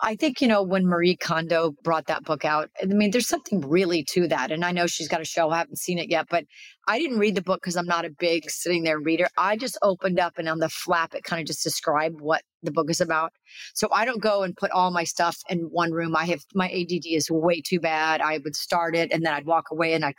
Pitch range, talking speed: 160-190 Hz, 275 wpm